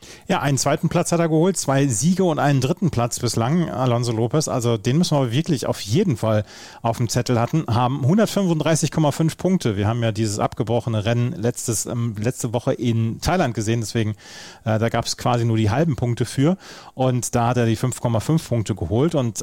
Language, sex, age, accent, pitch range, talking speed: German, male, 30-49, German, 115-150 Hz, 200 wpm